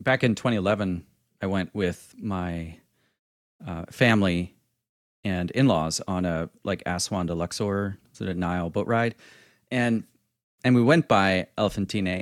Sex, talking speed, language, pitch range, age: male, 135 wpm, English, 100-125 Hz, 30-49